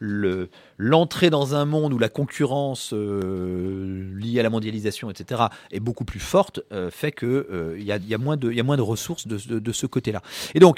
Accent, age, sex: French, 30-49, male